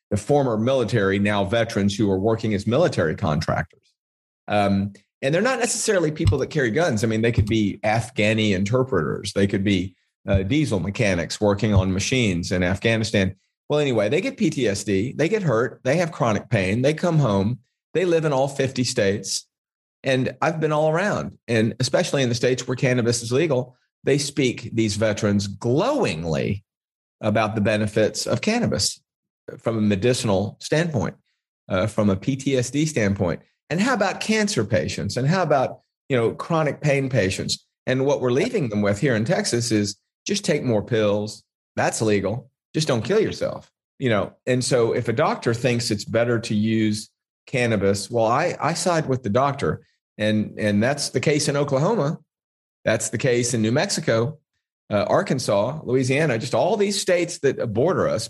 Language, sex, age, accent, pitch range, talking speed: English, male, 40-59, American, 105-140 Hz, 175 wpm